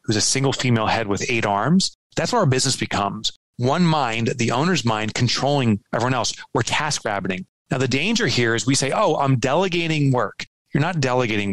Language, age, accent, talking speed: English, 30-49, American, 200 wpm